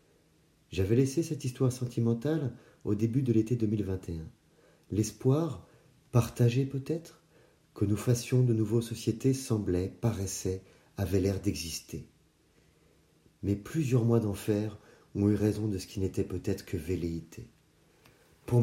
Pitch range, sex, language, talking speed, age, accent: 95-120 Hz, male, French, 125 wpm, 40-59, French